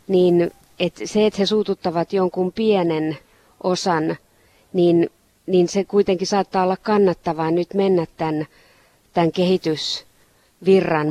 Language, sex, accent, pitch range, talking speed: Finnish, female, native, 155-185 Hz, 115 wpm